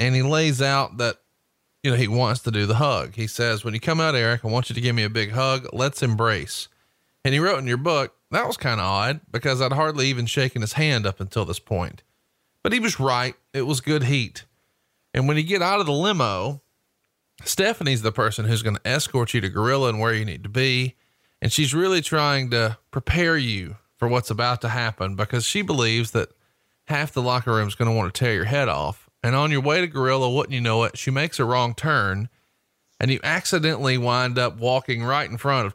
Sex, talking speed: male, 235 wpm